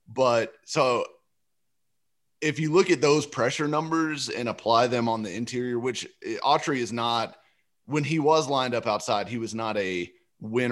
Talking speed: 170 wpm